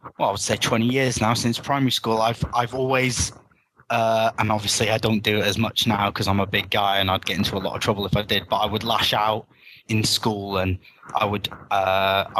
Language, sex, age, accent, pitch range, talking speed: English, male, 10-29, British, 100-120 Hz, 240 wpm